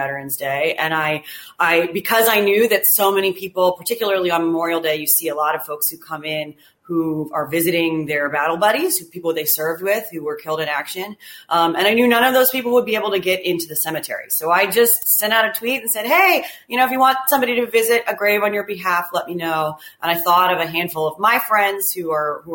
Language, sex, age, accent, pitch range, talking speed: English, female, 30-49, American, 150-195 Hz, 250 wpm